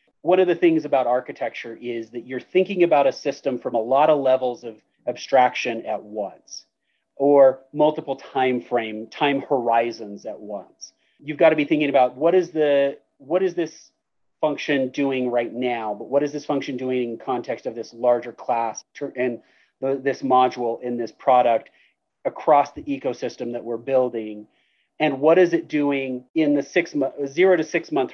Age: 30-49